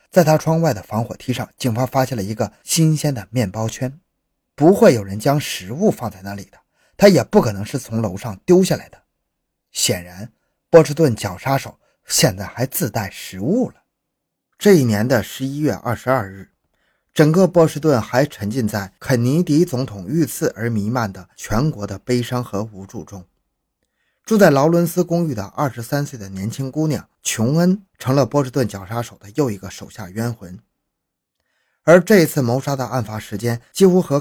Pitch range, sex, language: 105-145 Hz, male, Chinese